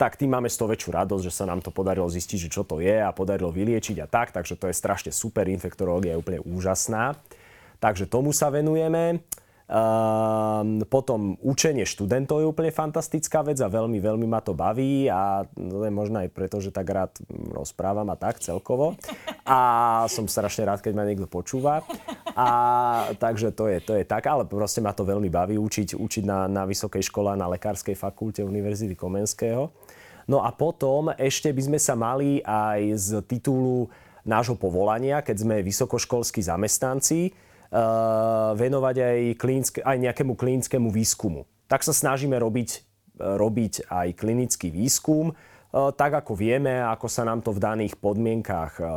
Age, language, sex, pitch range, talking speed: 30-49, Slovak, male, 100-125 Hz, 165 wpm